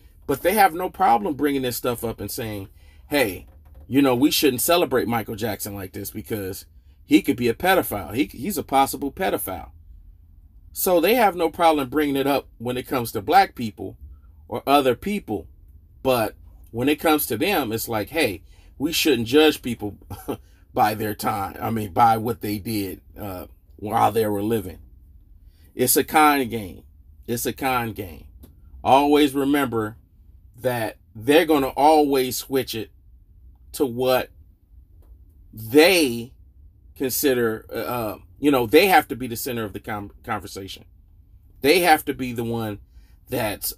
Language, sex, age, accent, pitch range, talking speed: English, male, 40-59, American, 85-135 Hz, 160 wpm